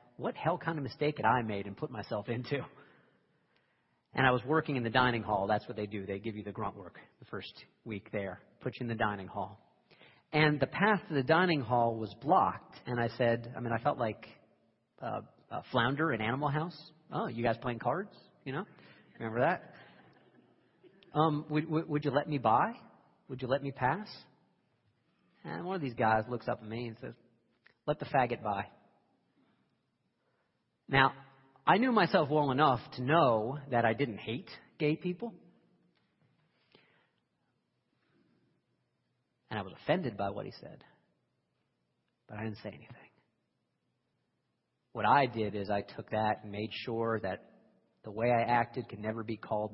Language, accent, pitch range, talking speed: English, American, 110-145 Hz, 175 wpm